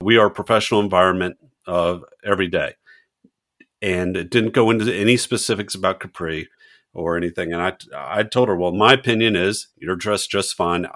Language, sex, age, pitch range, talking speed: English, male, 50-69, 90-115 Hz, 180 wpm